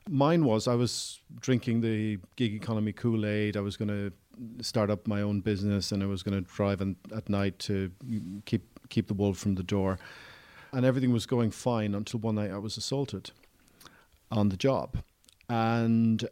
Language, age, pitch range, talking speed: English, 40-59, 105-125 Hz, 185 wpm